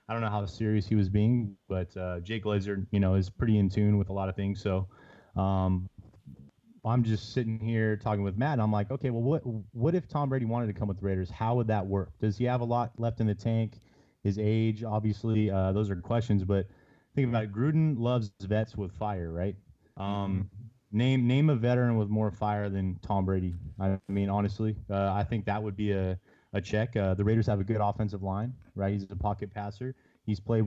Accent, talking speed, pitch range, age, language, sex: American, 225 wpm, 100-110 Hz, 30-49, English, male